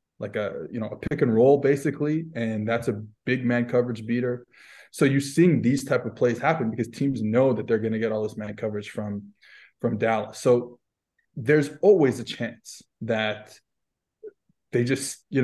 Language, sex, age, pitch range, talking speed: English, male, 20-39, 115-135 Hz, 185 wpm